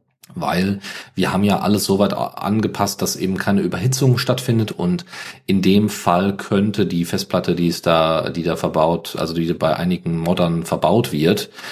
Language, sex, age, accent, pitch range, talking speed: German, male, 40-59, German, 85-130 Hz, 170 wpm